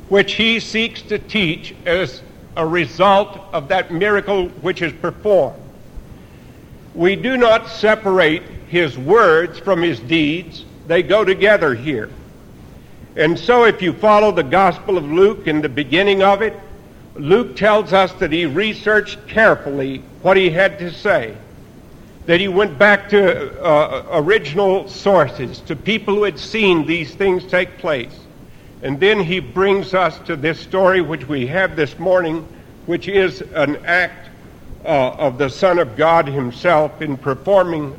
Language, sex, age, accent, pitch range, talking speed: English, male, 60-79, American, 165-200 Hz, 150 wpm